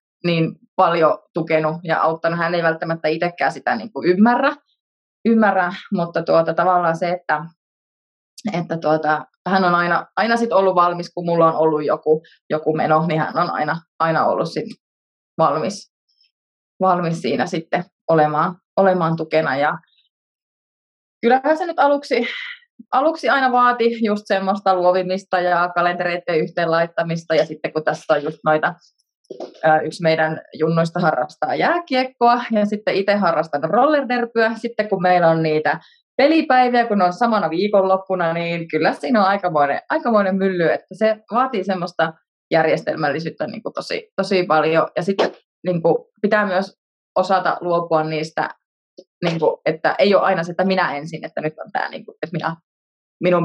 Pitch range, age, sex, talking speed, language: 160-205 Hz, 20-39, female, 145 wpm, Finnish